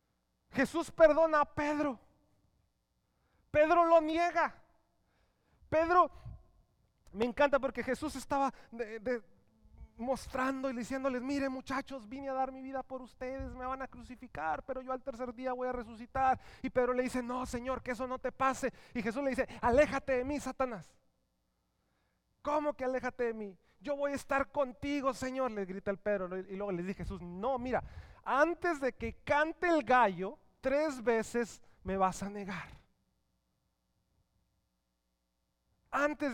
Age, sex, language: 30-49, male, English